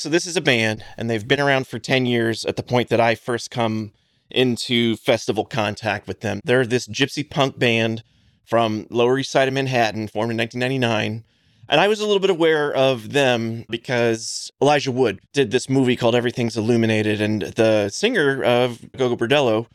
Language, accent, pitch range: English, American, 110-130 Hz